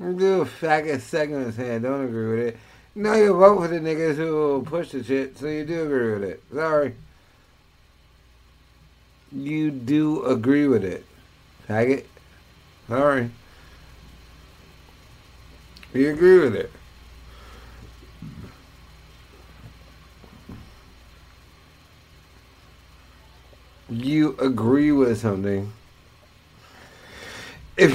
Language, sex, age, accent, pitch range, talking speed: English, male, 50-69, American, 80-130 Hz, 95 wpm